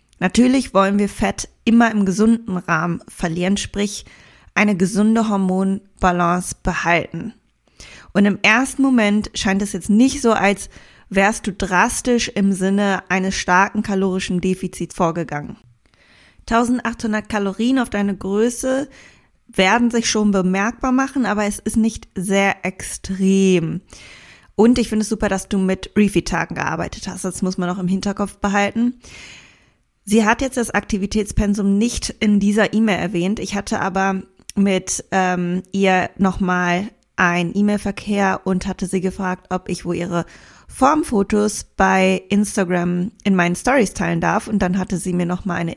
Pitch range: 185-215 Hz